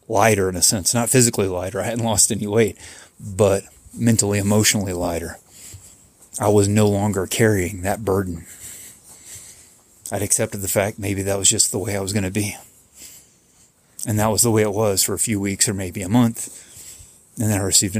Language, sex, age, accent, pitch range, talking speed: English, male, 30-49, American, 95-115 Hz, 190 wpm